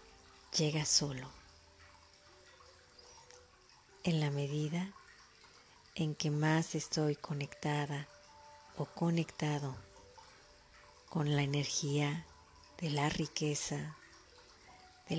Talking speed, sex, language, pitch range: 75 wpm, female, Spanish, 140-165 Hz